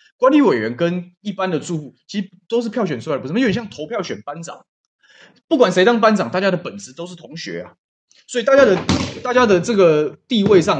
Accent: native